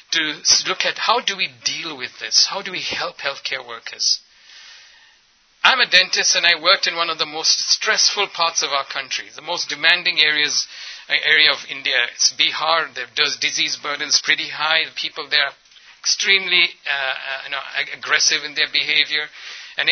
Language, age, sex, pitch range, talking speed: English, 60-79, male, 140-170 Hz, 175 wpm